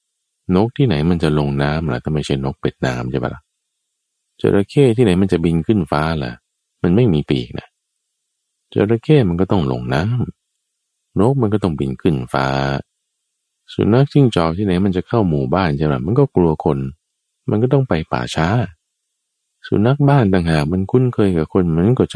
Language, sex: Thai, male